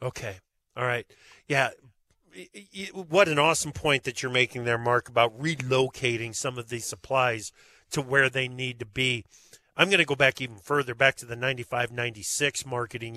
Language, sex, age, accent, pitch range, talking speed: English, male, 40-59, American, 125-160 Hz, 170 wpm